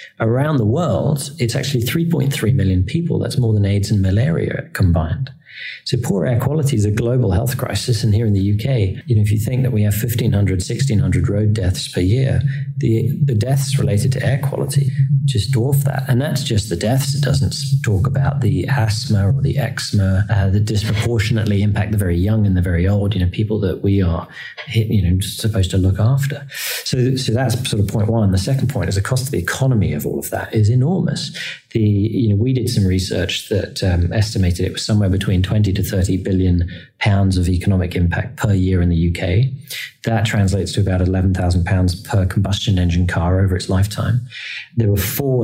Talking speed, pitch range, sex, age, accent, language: 205 wpm, 95-130 Hz, male, 40-59, British, English